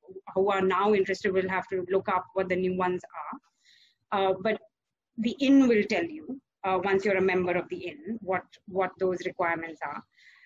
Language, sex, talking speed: English, female, 195 wpm